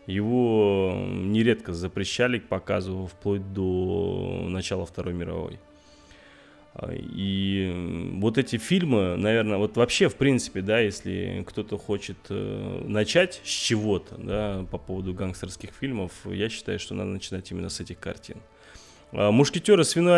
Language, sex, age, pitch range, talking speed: Russian, male, 20-39, 95-115 Hz, 125 wpm